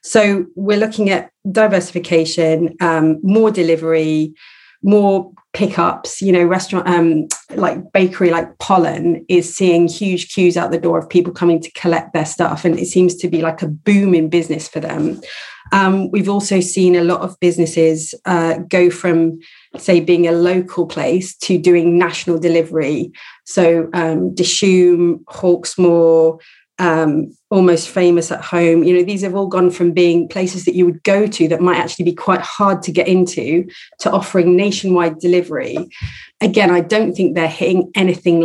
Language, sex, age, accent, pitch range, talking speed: English, female, 30-49, British, 165-185 Hz, 165 wpm